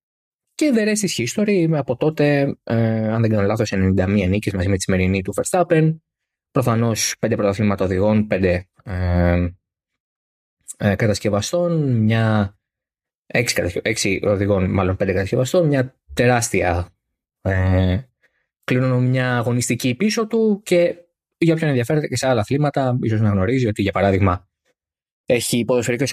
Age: 20-39